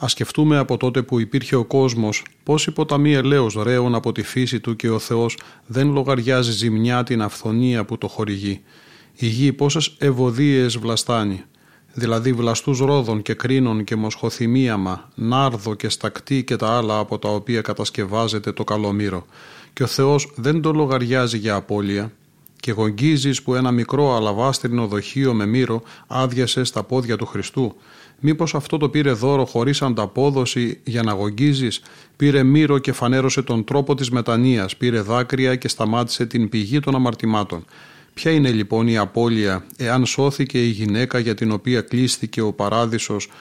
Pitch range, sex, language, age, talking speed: 110-135 Hz, male, Greek, 30-49, 160 wpm